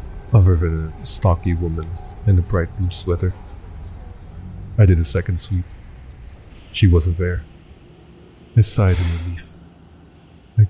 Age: 50-69